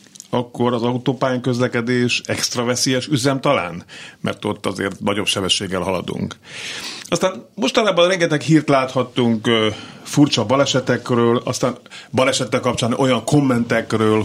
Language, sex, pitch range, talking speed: Hungarian, male, 110-130 Hz, 110 wpm